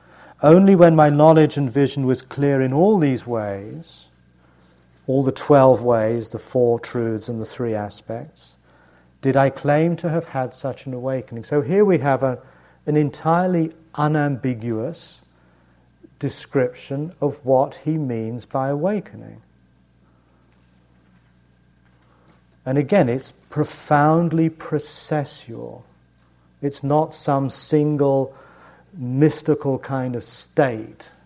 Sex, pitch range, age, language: male, 100-150 Hz, 40-59, English